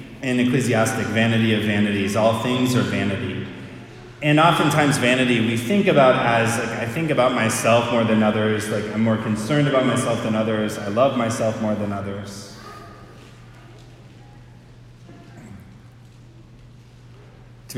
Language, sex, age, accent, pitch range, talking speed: English, male, 30-49, American, 110-125 Hz, 130 wpm